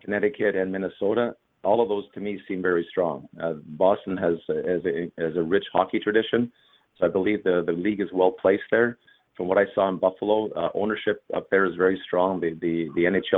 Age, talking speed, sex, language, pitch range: 30-49, 210 wpm, male, English, 90-100 Hz